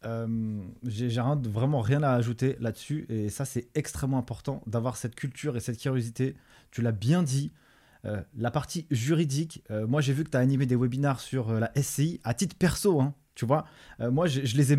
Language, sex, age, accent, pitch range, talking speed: French, male, 20-39, French, 125-155 Hz, 210 wpm